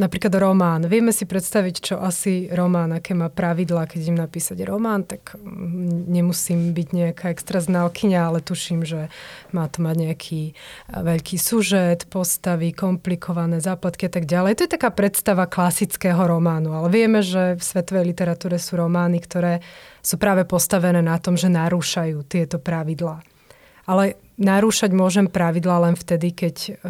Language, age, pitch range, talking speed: Slovak, 20-39, 165-185 Hz, 145 wpm